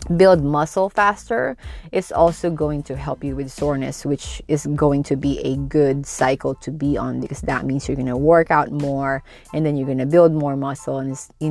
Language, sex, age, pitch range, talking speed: English, female, 20-39, 135-160 Hz, 215 wpm